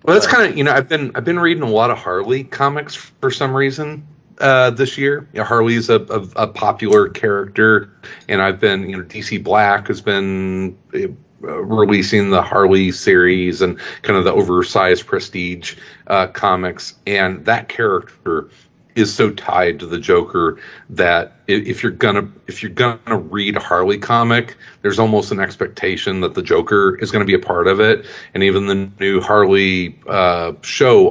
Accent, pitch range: American, 95-145 Hz